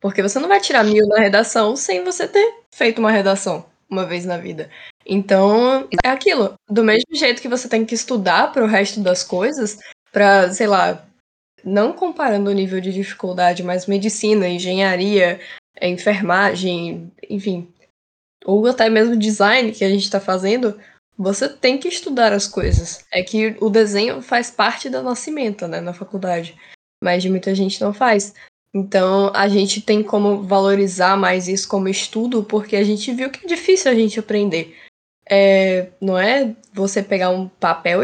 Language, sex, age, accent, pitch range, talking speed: English, female, 10-29, Brazilian, 185-220 Hz, 165 wpm